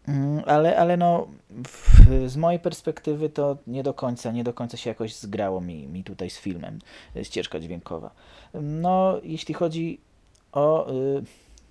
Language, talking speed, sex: Polish, 150 wpm, male